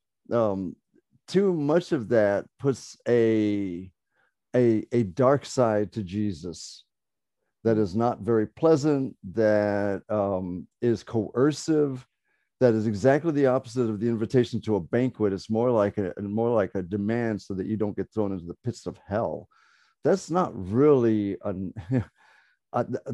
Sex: male